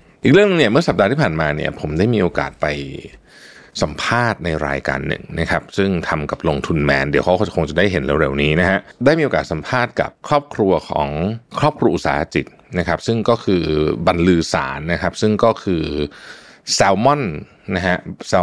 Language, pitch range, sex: Thai, 80-110 Hz, male